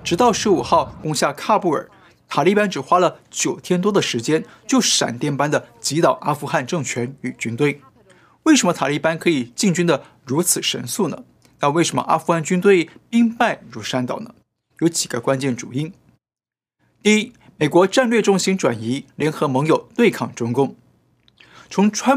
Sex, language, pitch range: male, Chinese, 135-200 Hz